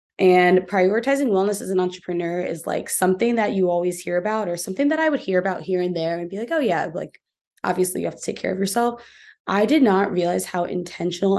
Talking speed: 230 wpm